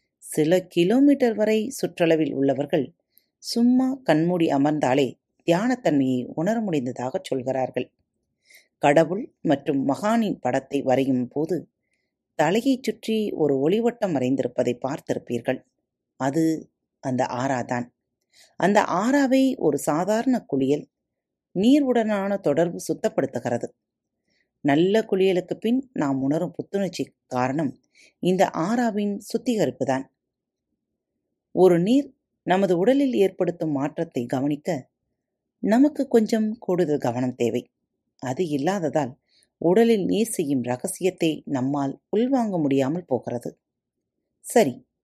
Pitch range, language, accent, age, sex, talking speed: 135-220 Hz, Tamil, native, 30-49, female, 90 wpm